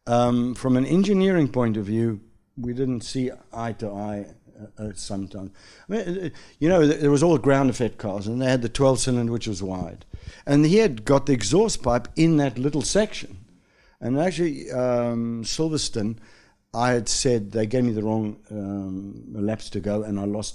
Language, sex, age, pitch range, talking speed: English, male, 60-79, 100-125 Hz, 195 wpm